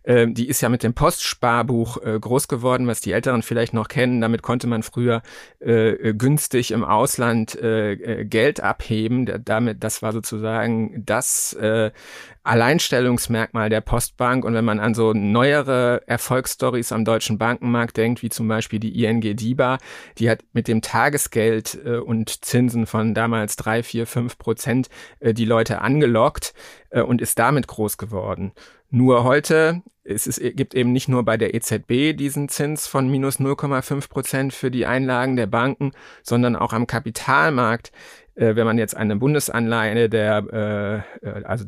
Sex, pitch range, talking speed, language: male, 110-125 Hz, 150 wpm, German